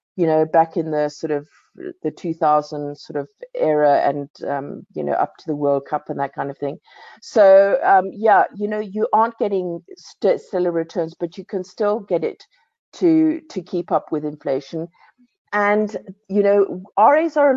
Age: 50-69